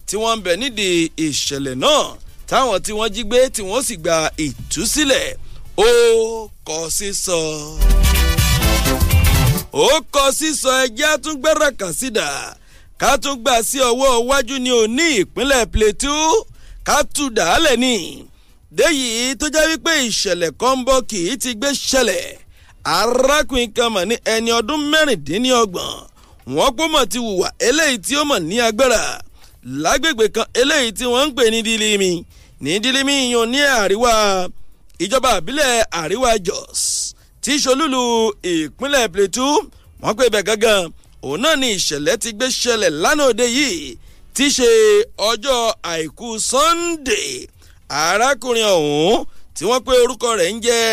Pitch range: 215-285 Hz